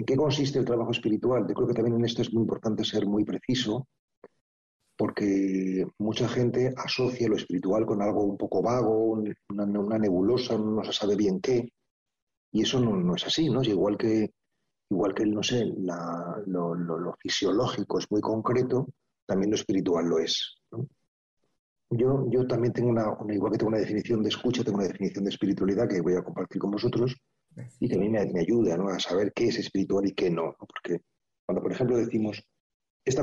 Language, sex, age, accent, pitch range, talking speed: Spanish, male, 40-59, Spanish, 100-125 Hz, 200 wpm